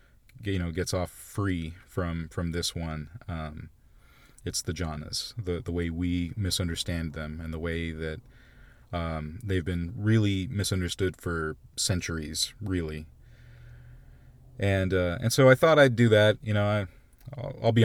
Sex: male